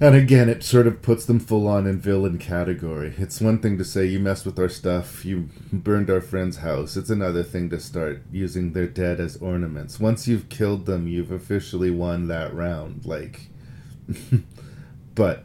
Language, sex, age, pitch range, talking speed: English, male, 40-59, 90-110 Hz, 185 wpm